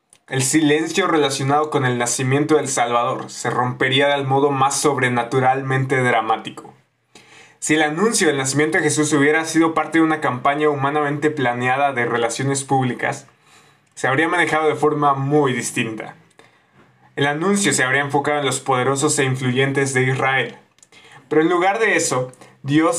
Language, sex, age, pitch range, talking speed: Spanish, male, 20-39, 130-150 Hz, 150 wpm